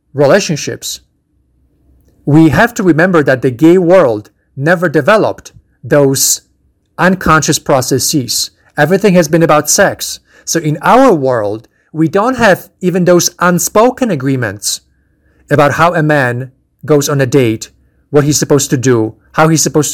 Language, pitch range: English, 125-165 Hz